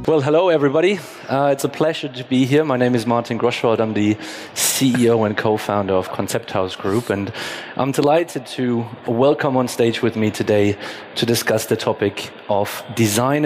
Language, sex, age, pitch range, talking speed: English, male, 30-49, 105-130 Hz, 180 wpm